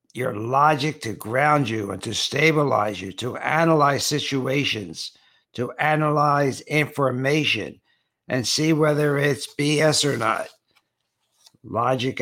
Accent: American